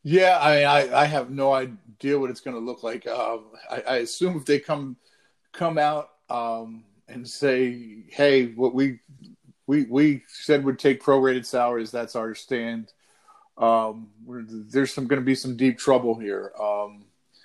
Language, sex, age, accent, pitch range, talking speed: English, male, 40-59, American, 120-150 Hz, 175 wpm